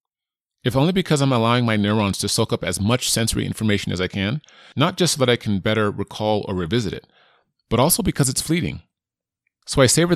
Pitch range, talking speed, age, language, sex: 95-120 Hz, 215 wpm, 30-49, English, male